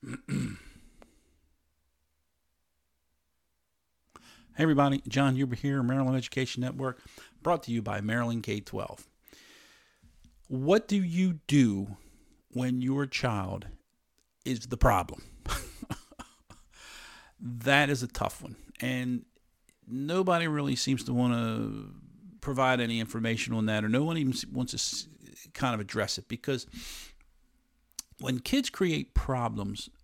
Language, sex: English, male